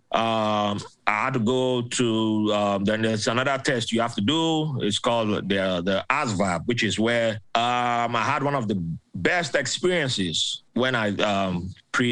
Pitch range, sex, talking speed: 100-125 Hz, male, 175 wpm